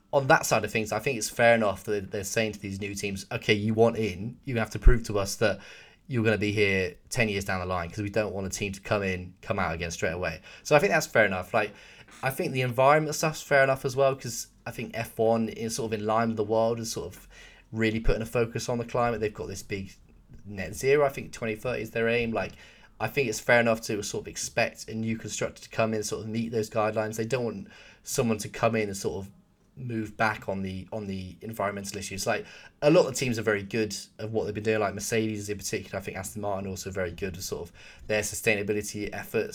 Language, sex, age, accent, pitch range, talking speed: English, male, 20-39, British, 100-120 Hz, 260 wpm